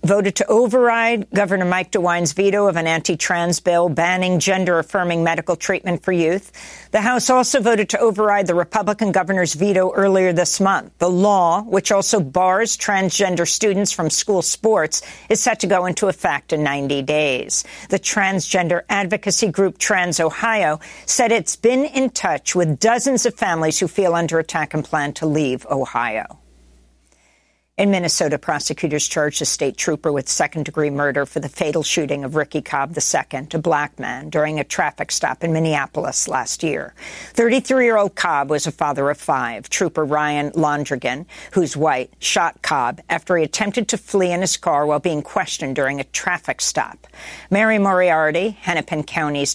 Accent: American